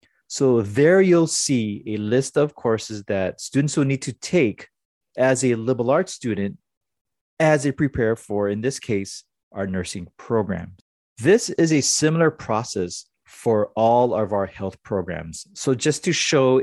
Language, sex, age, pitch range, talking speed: English, male, 30-49, 95-135 Hz, 160 wpm